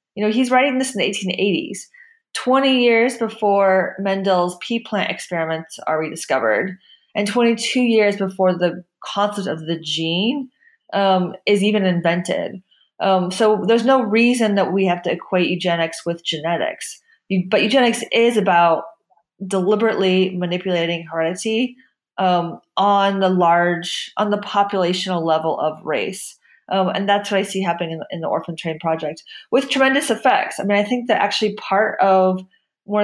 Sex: female